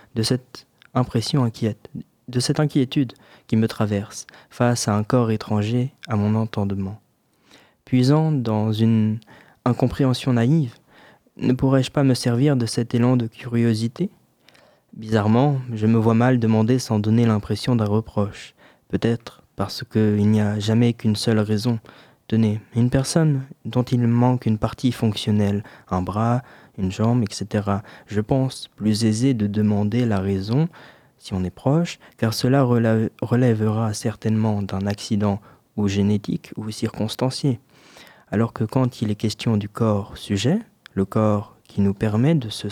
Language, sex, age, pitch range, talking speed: French, male, 20-39, 105-125 Hz, 150 wpm